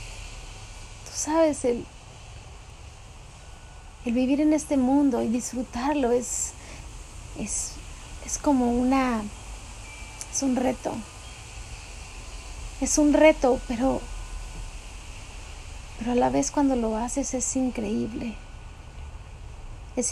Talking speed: 90 wpm